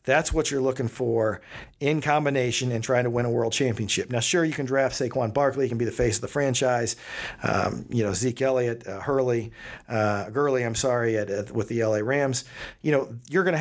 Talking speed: 220 wpm